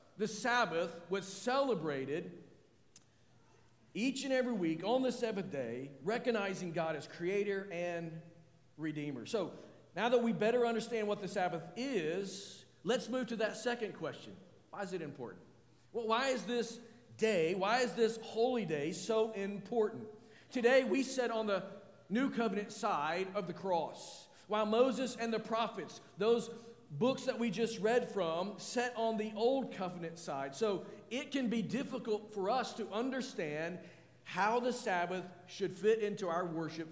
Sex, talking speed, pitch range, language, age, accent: male, 155 wpm, 150-225 Hz, English, 50-69, American